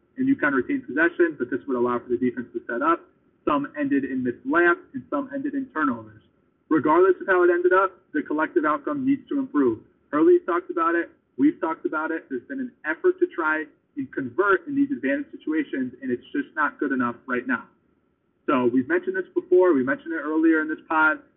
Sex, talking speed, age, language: male, 220 wpm, 30-49, English